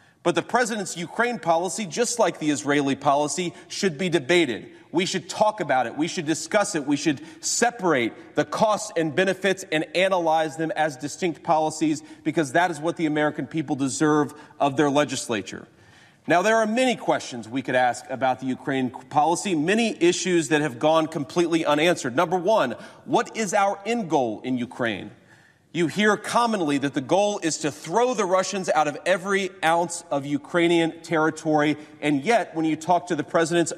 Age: 40-59